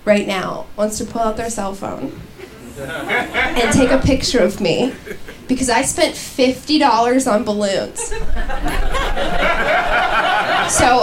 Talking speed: 120 wpm